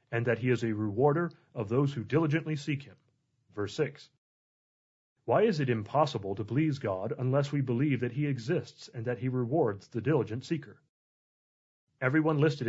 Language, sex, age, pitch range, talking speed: English, male, 30-49, 120-150 Hz, 170 wpm